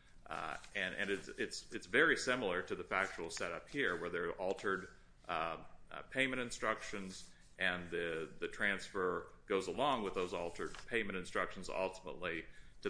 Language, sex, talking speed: English, male, 160 wpm